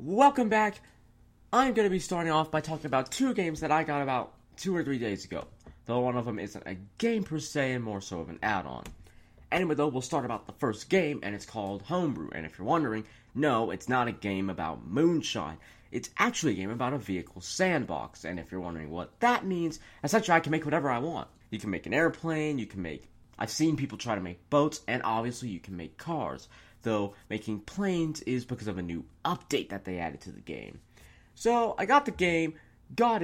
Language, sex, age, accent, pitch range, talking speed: English, male, 20-39, American, 100-160 Hz, 225 wpm